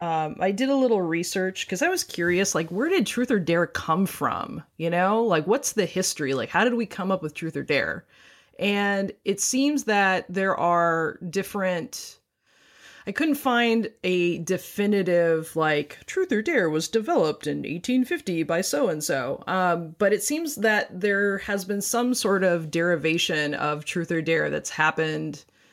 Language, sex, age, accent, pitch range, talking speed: English, female, 20-39, American, 160-200 Hz, 170 wpm